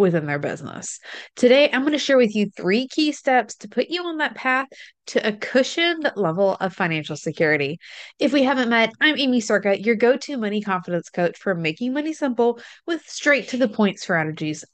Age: 20-39